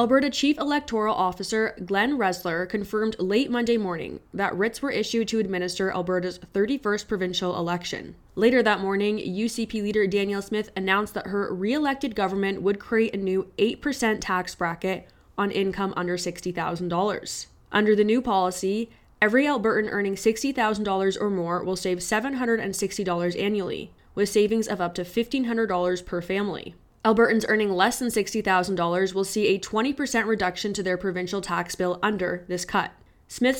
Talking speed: 150 wpm